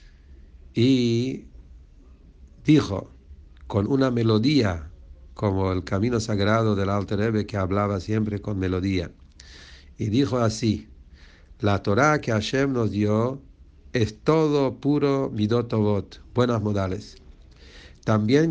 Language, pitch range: English, 85-125 Hz